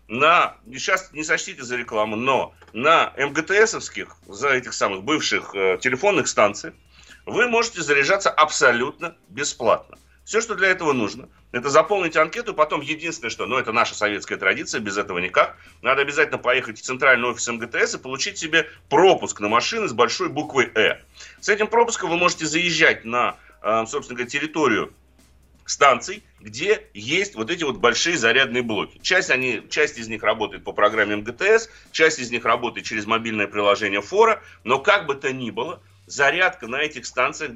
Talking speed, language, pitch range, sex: 165 wpm, Russian, 115-180 Hz, male